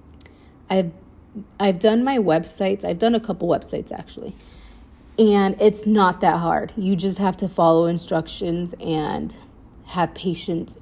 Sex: female